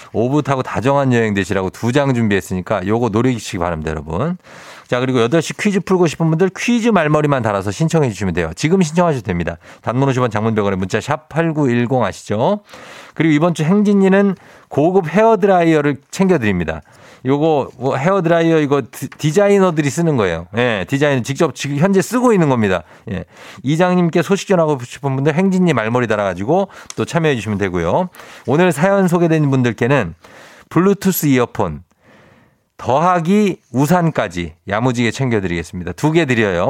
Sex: male